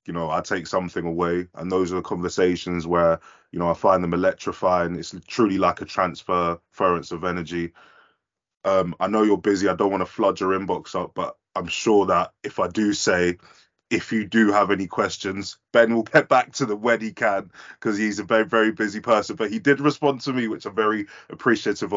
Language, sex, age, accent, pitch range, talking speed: English, male, 20-39, British, 95-110 Hz, 210 wpm